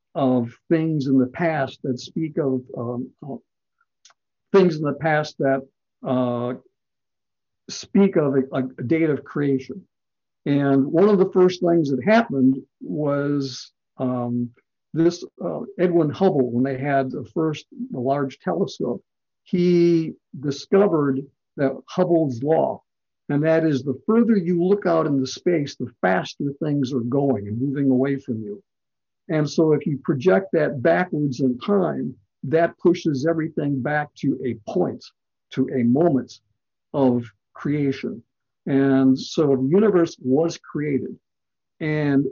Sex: male